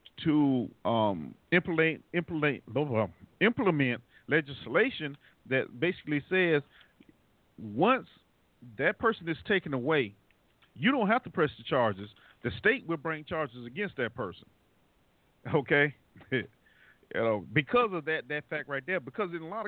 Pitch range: 130-180 Hz